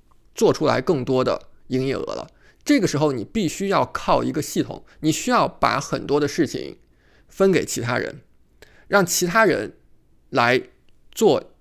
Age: 20-39